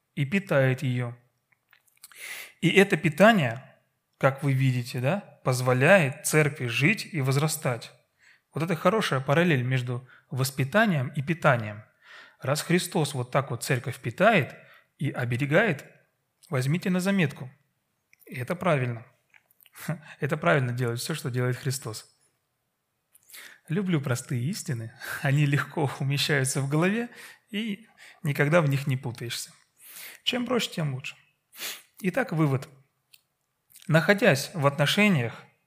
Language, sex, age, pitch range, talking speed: Russian, male, 30-49, 130-170 Hz, 115 wpm